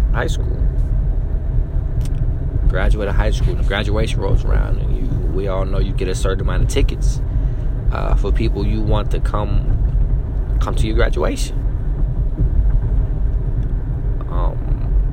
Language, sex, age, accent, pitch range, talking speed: English, male, 20-39, American, 110-130 Hz, 125 wpm